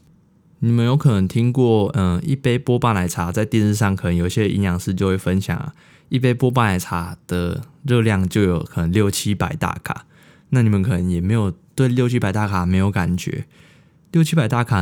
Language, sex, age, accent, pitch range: Chinese, male, 20-39, native, 90-120 Hz